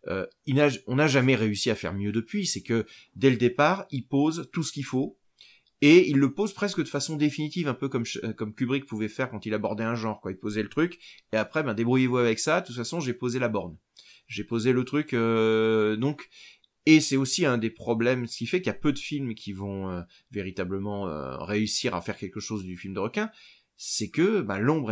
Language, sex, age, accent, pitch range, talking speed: French, male, 30-49, French, 105-135 Hz, 240 wpm